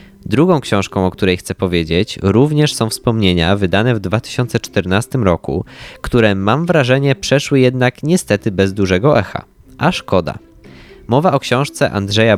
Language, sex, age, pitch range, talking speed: Polish, male, 20-39, 95-130 Hz, 135 wpm